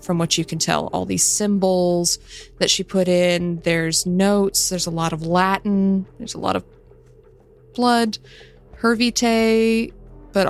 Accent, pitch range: American, 175-200 Hz